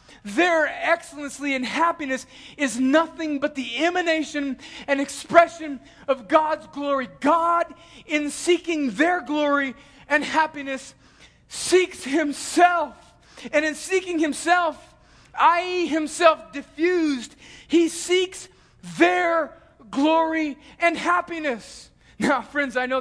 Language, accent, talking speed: English, American, 105 wpm